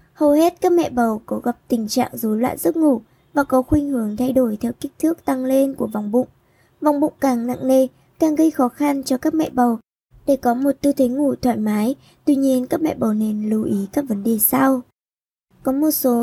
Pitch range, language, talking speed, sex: 235-280 Hz, Vietnamese, 235 wpm, male